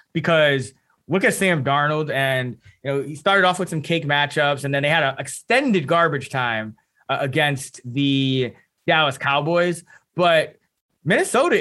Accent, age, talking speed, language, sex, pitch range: American, 20-39, 155 wpm, English, male, 125-155 Hz